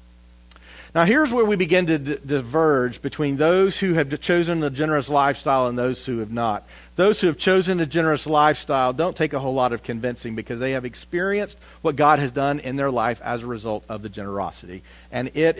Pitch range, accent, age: 100-155 Hz, American, 40-59